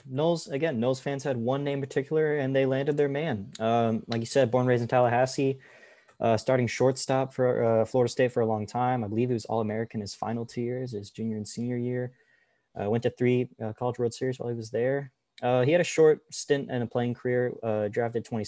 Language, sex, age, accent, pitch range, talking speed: English, male, 20-39, American, 105-125 Hz, 230 wpm